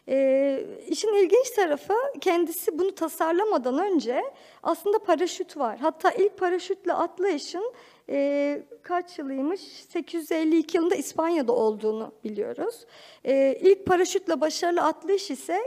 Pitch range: 275-380 Hz